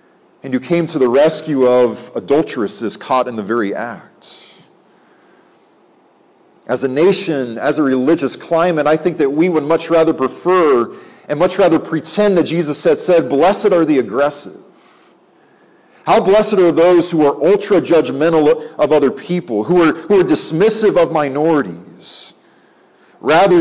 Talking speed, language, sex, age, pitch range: 145 wpm, English, male, 40-59, 140-180 Hz